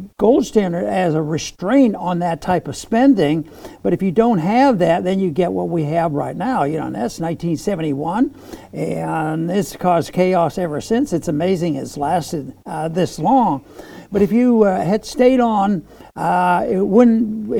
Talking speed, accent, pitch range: 175 wpm, American, 165-215 Hz